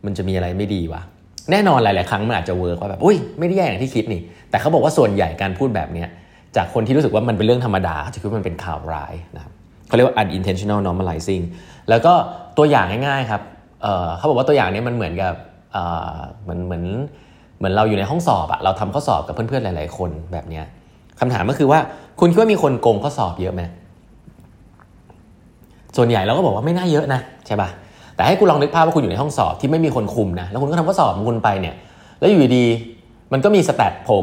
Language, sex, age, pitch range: Thai, male, 20-39, 90-130 Hz